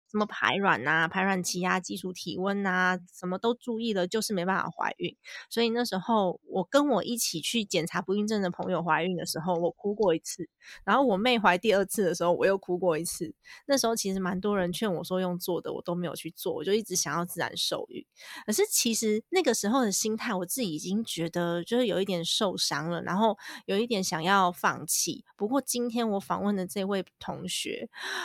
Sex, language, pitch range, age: female, Chinese, 180-220 Hz, 20-39